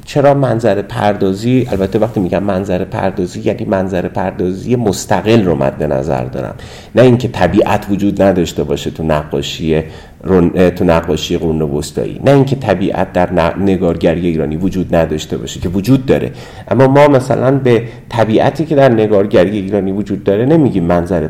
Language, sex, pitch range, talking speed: English, male, 95-120 Hz, 150 wpm